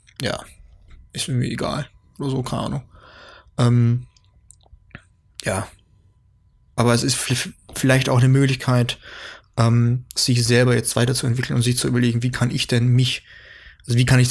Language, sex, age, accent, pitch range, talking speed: German, male, 20-39, German, 115-125 Hz, 155 wpm